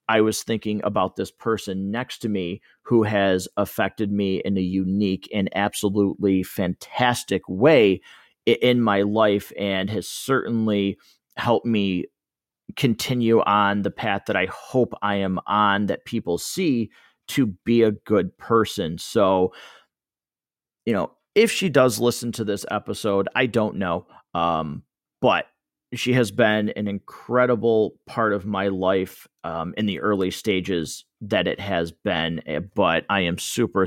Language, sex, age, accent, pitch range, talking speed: English, male, 30-49, American, 95-115 Hz, 145 wpm